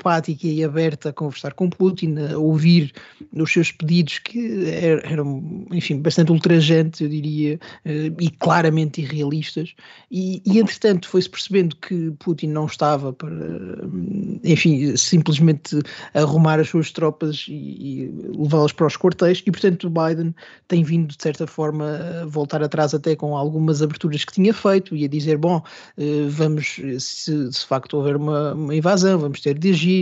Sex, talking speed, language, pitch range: male, 155 wpm, Portuguese, 150-180 Hz